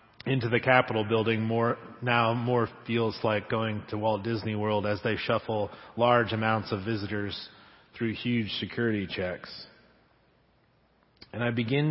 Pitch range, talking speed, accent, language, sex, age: 110-125 Hz, 140 wpm, American, English, male, 30-49